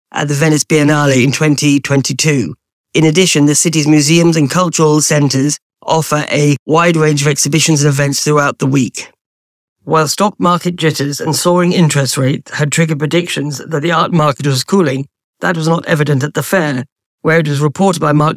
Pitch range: 140-160 Hz